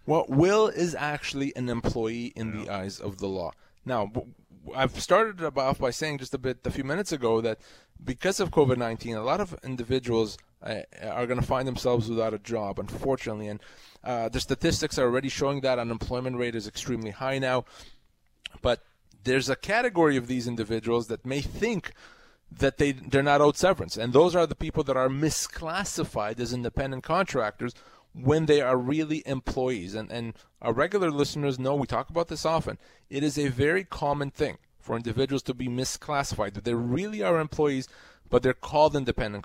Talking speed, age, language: 185 wpm, 20-39, English